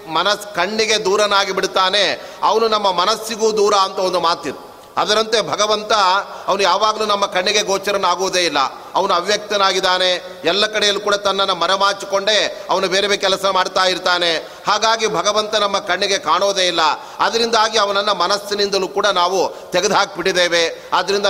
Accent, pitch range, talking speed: native, 180-205 Hz, 125 wpm